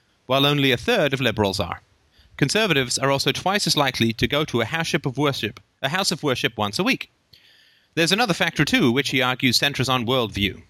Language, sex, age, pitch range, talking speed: English, male, 30-49, 120-165 Hz, 185 wpm